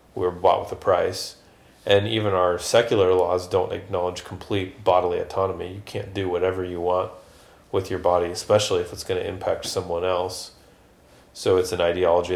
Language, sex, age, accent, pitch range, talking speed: English, male, 30-49, American, 90-105 Hz, 175 wpm